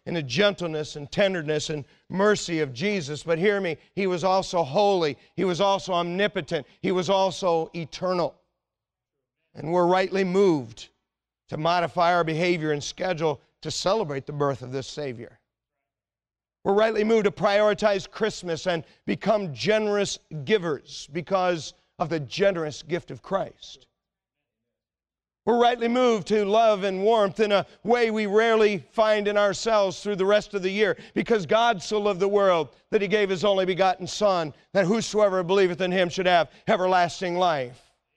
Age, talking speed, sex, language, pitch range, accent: 50-69, 160 wpm, male, English, 160-200 Hz, American